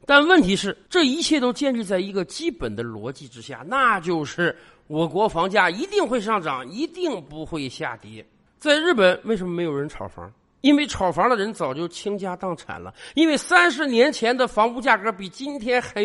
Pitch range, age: 185-295 Hz, 50-69